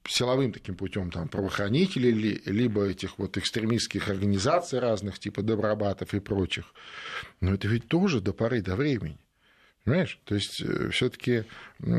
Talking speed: 130 wpm